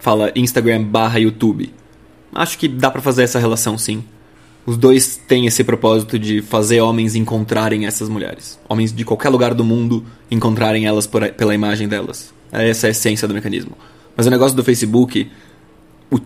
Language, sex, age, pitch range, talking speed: Portuguese, male, 20-39, 115-135 Hz, 175 wpm